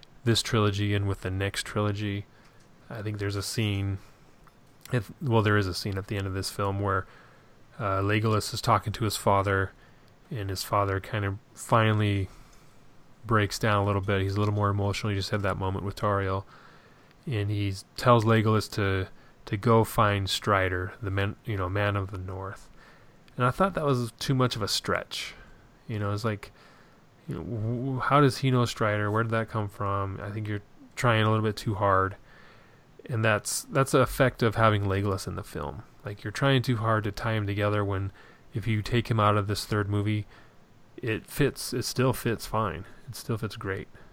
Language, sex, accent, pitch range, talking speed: English, male, American, 100-120 Hz, 195 wpm